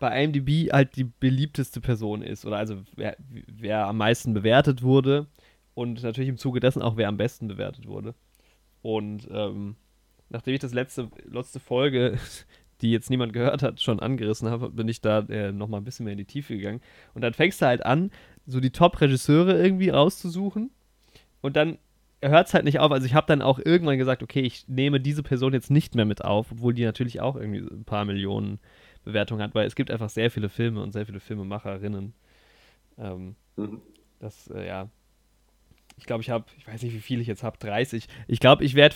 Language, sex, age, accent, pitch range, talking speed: German, male, 20-39, German, 105-135 Hz, 200 wpm